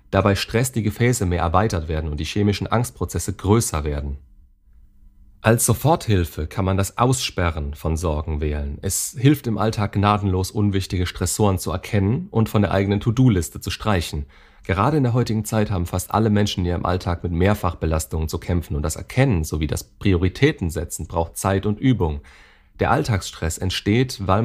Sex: male